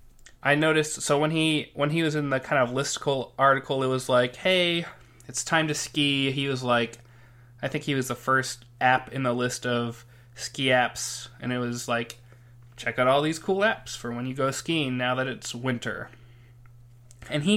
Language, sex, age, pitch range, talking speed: English, male, 20-39, 120-140 Hz, 200 wpm